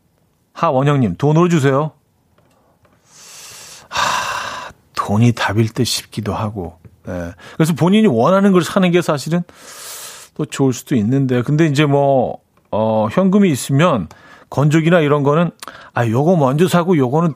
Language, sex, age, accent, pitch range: Korean, male, 40-59, native, 115-155 Hz